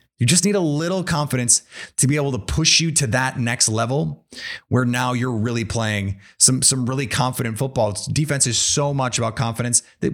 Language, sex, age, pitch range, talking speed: English, male, 30-49, 115-145 Hz, 195 wpm